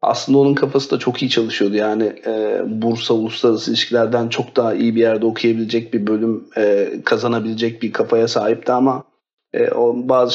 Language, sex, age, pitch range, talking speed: Turkish, male, 40-59, 115-135 Hz, 170 wpm